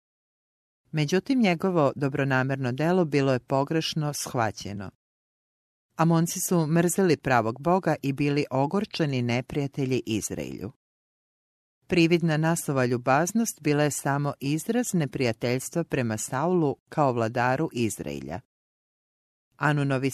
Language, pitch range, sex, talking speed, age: English, 125-165 Hz, female, 95 wpm, 40-59